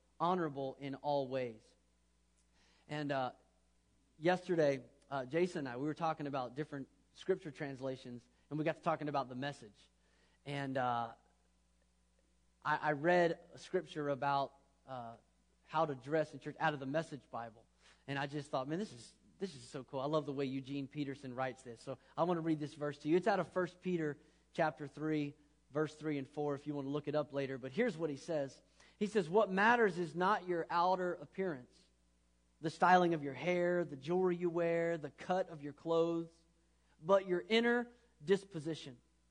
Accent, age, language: American, 30-49, English